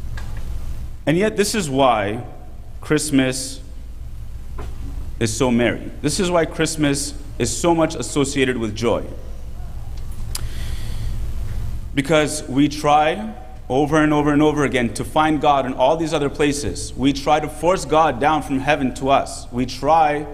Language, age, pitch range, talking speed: English, 30-49, 125-155 Hz, 140 wpm